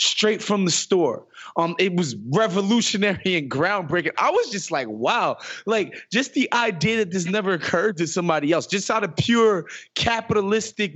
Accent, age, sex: American, 20-39, male